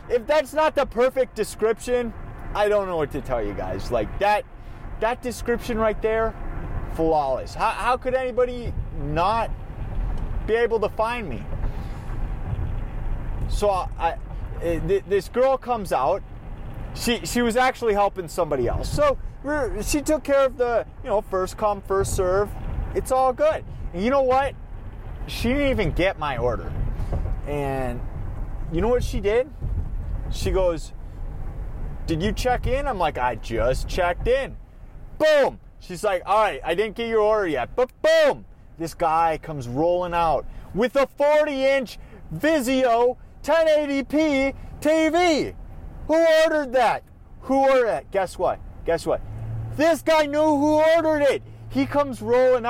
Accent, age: American, 20-39